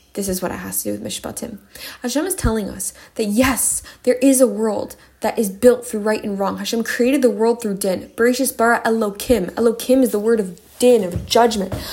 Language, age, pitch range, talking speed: English, 10-29, 220-265 Hz, 215 wpm